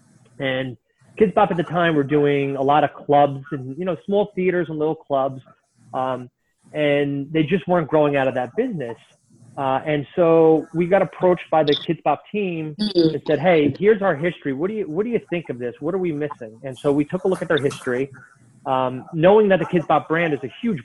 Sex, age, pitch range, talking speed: male, 30-49, 135-170 Hz, 225 wpm